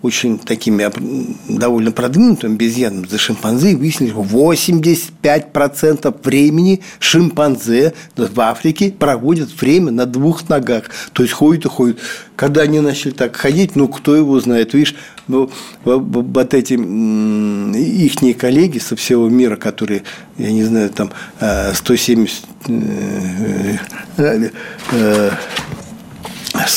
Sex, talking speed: male, 105 wpm